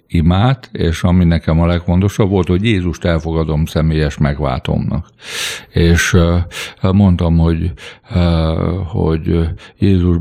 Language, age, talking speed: Hungarian, 60-79, 100 wpm